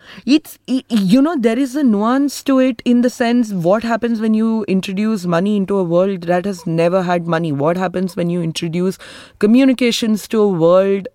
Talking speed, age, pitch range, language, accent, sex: 190 wpm, 20-39, 155-195 Hz, Hindi, native, female